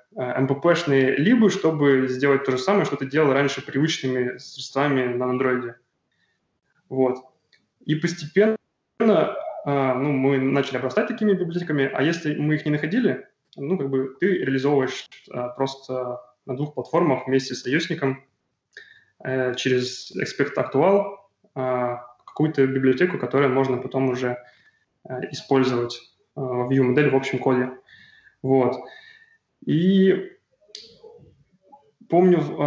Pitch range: 130-165 Hz